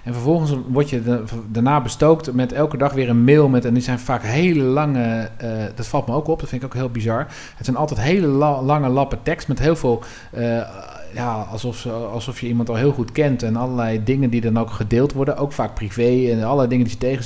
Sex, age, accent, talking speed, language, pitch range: male, 40-59, Dutch, 245 wpm, Dutch, 110-130 Hz